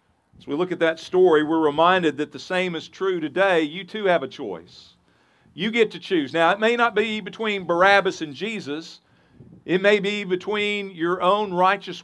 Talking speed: 195 wpm